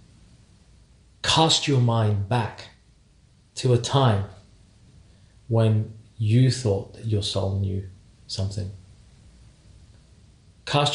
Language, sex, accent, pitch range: English, male, British, 105-120 Hz